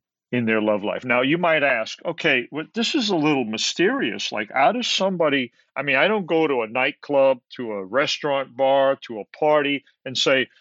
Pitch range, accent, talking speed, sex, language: 130-190 Hz, American, 205 wpm, male, English